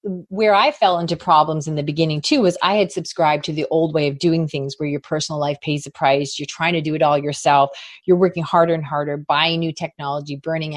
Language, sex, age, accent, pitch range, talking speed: English, female, 30-49, American, 165-215 Hz, 240 wpm